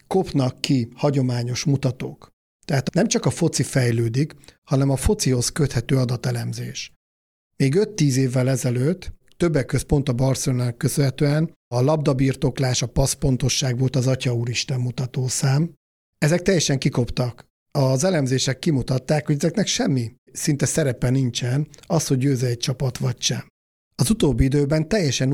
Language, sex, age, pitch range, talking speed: Hungarian, male, 50-69, 125-150 Hz, 135 wpm